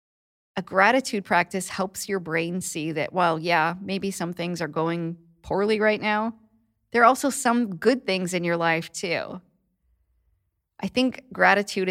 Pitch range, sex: 160-205 Hz, female